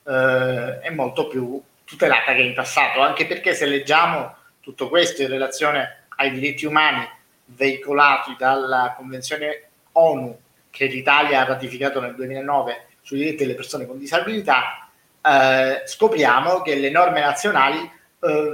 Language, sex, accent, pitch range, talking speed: Italian, male, native, 130-155 Hz, 135 wpm